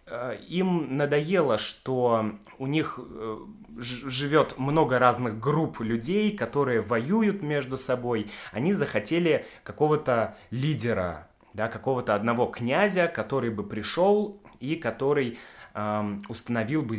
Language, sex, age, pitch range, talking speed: Russian, male, 20-39, 110-150 Hz, 105 wpm